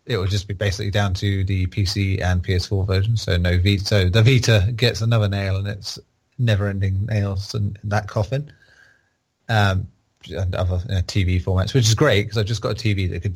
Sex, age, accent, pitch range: male, 30-49, British, 95-115 Hz